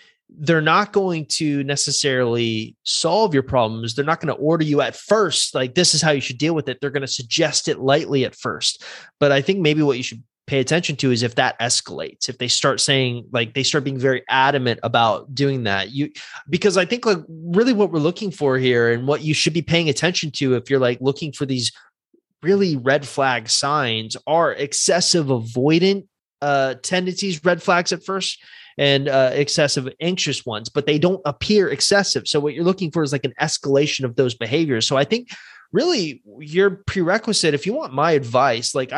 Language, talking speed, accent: English, 205 wpm, American